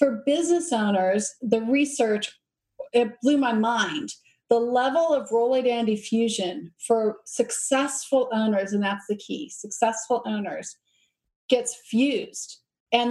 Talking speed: 125 wpm